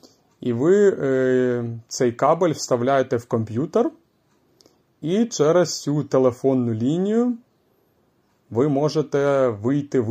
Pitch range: 115-145 Hz